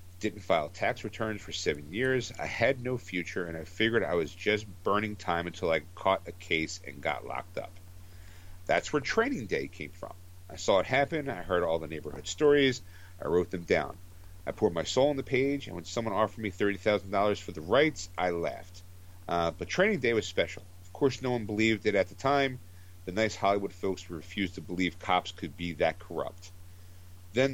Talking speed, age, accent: 210 wpm, 50-69, American